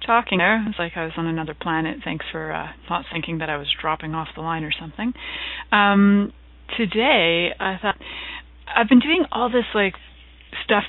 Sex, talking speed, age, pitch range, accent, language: female, 195 wpm, 30-49, 170-205 Hz, American, English